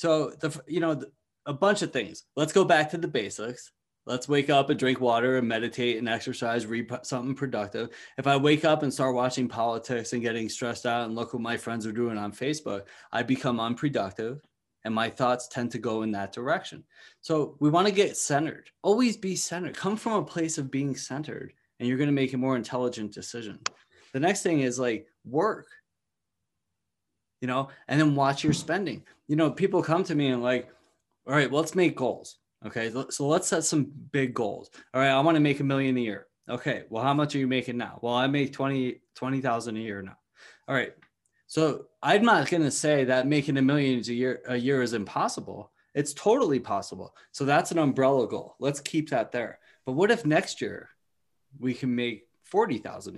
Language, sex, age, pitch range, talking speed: English, male, 20-39, 120-150 Hz, 210 wpm